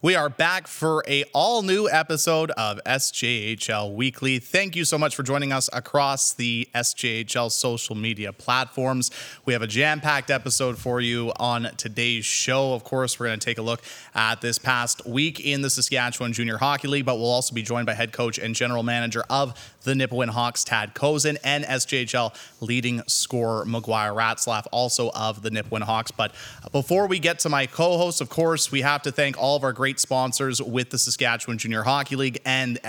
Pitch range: 115-145 Hz